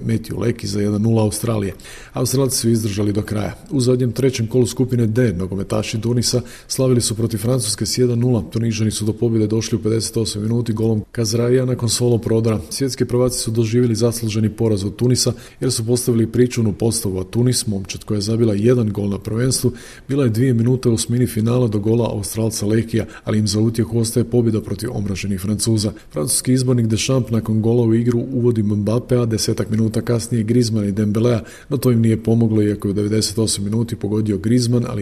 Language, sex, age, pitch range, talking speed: Croatian, male, 40-59, 105-120 Hz, 190 wpm